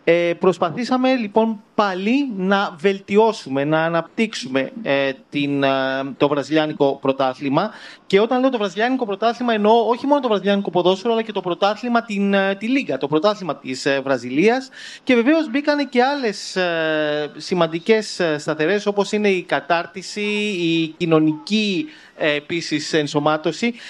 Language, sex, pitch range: Greek, male, 155-225 Hz